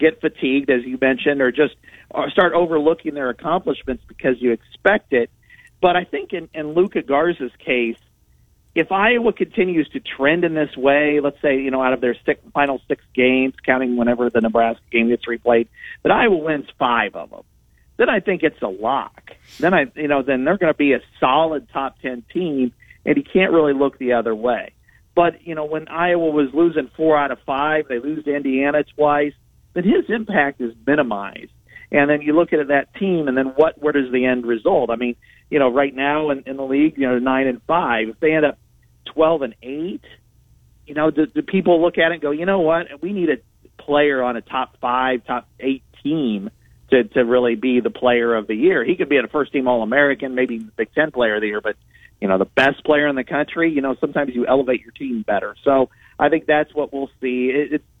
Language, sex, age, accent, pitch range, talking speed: English, male, 50-69, American, 125-155 Hz, 220 wpm